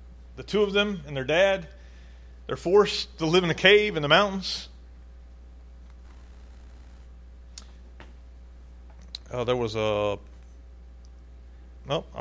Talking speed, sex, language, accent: 110 wpm, male, English, American